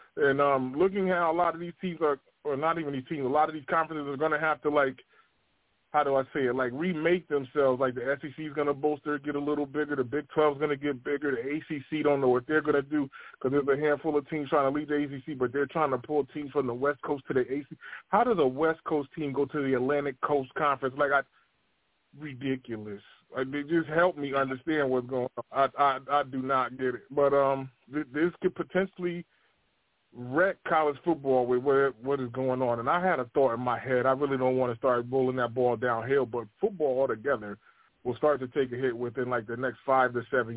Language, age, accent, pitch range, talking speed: English, 20-39, American, 130-150 Hz, 250 wpm